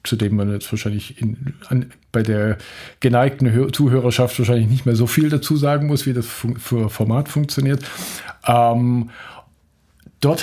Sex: male